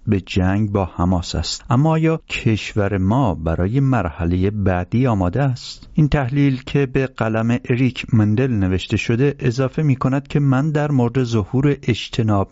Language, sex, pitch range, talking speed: English, male, 100-135 Hz, 150 wpm